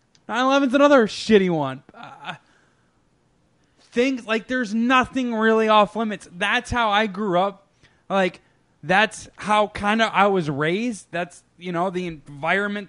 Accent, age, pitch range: American, 20-39, 160-205 Hz